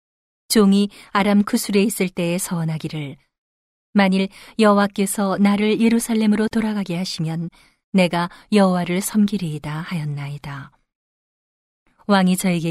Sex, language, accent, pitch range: female, Korean, native, 165-215 Hz